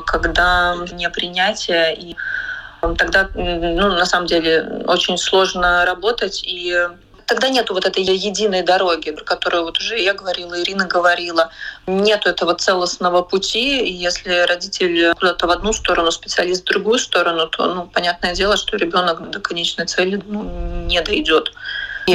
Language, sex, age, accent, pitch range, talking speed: Russian, female, 20-39, native, 170-195 Hz, 145 wpm